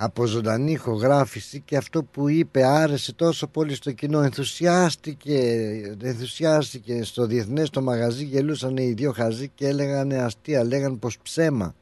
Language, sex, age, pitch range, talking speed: Greek, male, 60-79, 110-155 Hz, 140 wpm